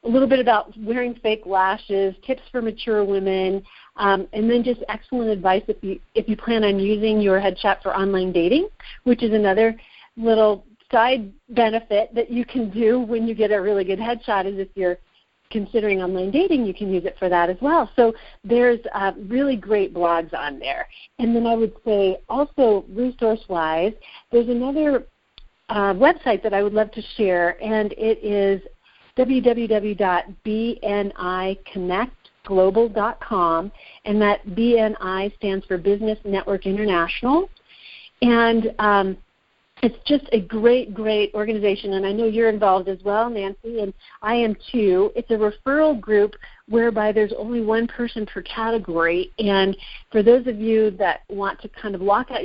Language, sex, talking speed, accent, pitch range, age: English, female, 160 wpm, American, 195-230 Hz, 50-69